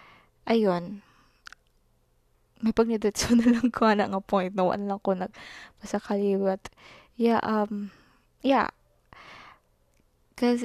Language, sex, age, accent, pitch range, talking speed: Filipino, female, 20-39, native, 200-245 Hz, 120 wpm